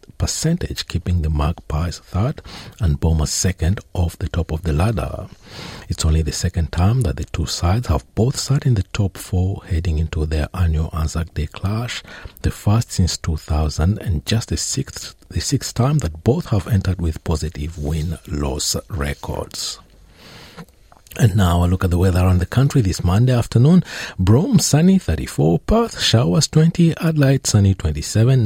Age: 50-69